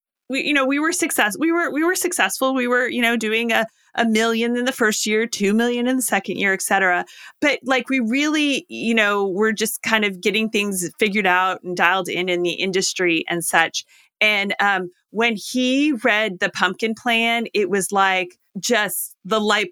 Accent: American